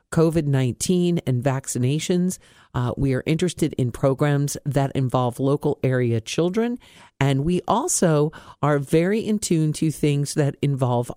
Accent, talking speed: American, 135 wpm